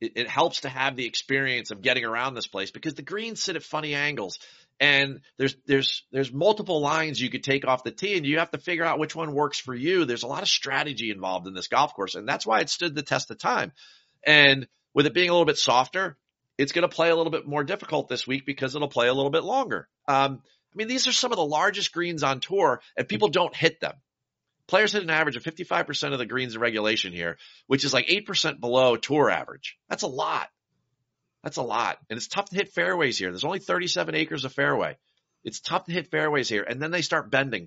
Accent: American